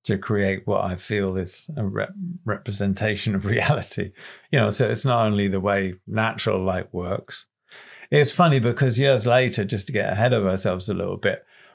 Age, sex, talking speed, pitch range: 50-69, male, 180 wpm, 105-125 Hz